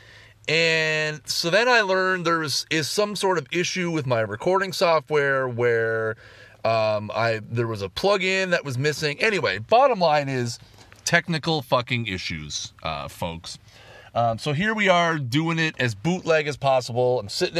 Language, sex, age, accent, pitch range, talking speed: English, male, 30-49, American, 110-155 Hz, 165 wpm